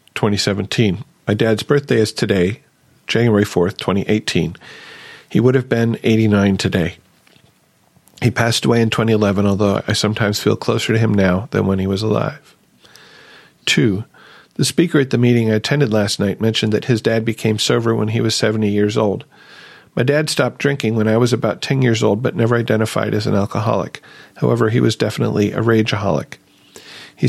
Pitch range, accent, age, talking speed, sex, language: 105-120 Hz, American, 40-59, 175 wpm, male, English